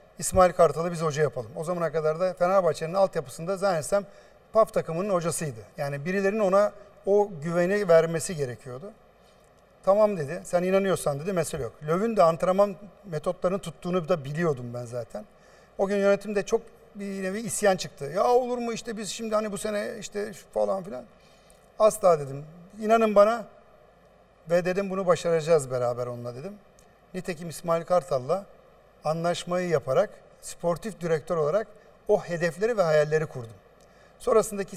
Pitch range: 160-200 Hz